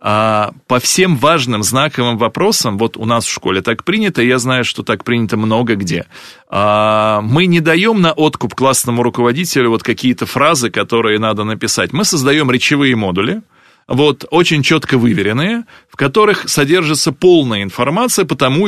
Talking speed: 150 wpm